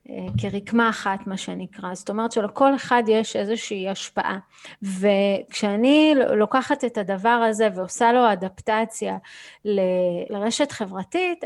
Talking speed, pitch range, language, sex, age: 110 wpm, 210-265 Hz, Hebrew, female, 30-49